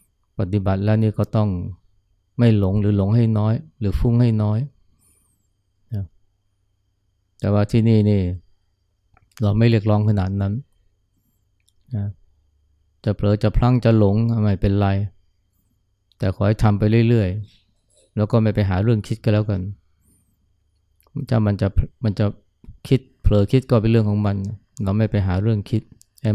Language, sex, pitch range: Thai, male, 95-110 Hz